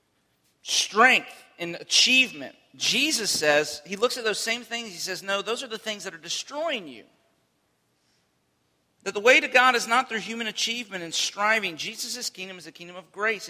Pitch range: 155-220 Hz